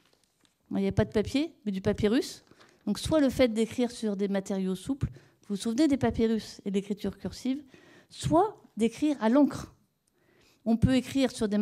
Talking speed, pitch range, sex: 180 wpm, 205-260 Hz, female